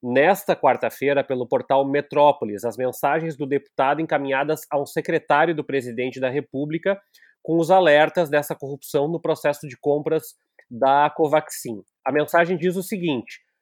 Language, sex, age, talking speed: Portuguese, male, 30-49, 140 wpm